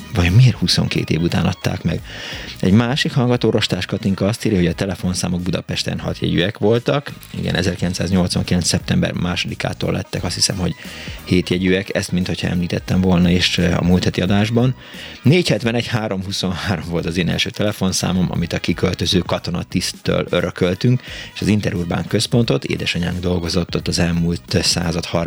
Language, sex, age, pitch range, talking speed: Hungarian, male, 30-49, 90-105 Hz, 140 wpm